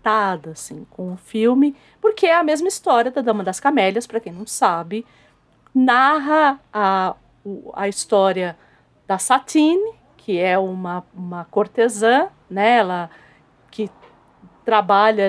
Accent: Brazilian